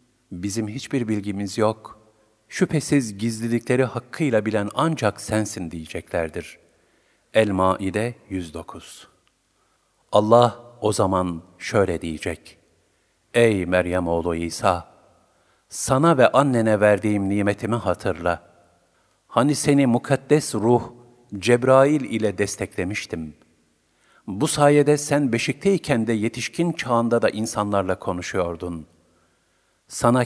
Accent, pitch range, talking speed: native, 95-125 Hz, 95 wpm